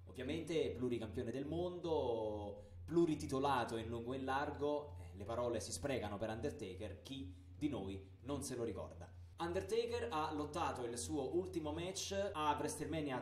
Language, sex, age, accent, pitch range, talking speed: Italian, male, 20-39, native, 95-145 Hz, 145 wpm